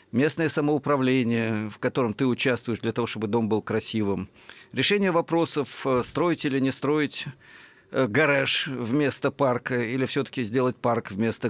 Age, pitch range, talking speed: 50-69, 115-155 Hz, 135 wpm